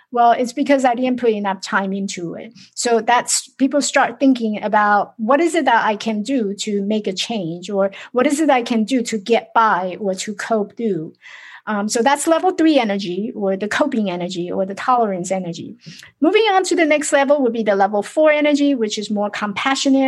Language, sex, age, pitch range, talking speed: English, female, 50-69, 210-270 Hz, 210 wpm